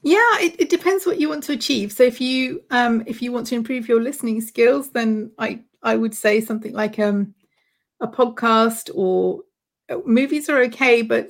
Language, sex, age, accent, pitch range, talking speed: German, female, 40-59, British, 200-235 Hz, 195 wpm